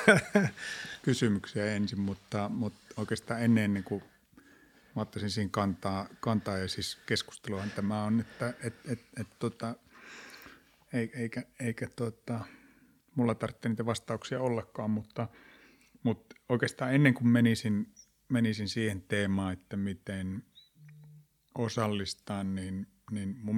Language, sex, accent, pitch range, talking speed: Finnish, male, native, 100-120 Hz, 90 wpm